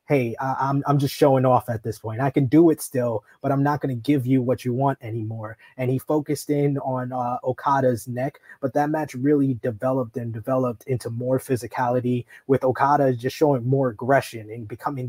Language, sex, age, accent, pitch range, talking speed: English, male, 20-39, American, 125-140 Hz, 205 wpm